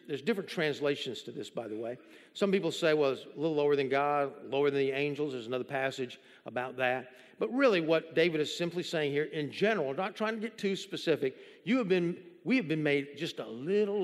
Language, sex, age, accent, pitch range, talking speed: English, male, 50-69, American, 160-230 Hz, 225 wpm